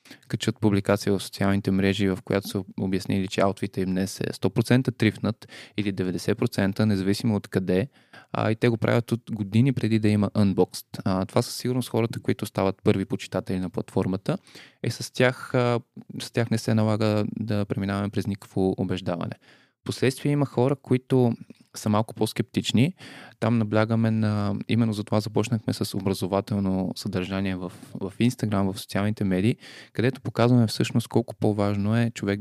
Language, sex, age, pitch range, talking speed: Bulgarian, male, 20-39, 95-120 Hz, 155 wpm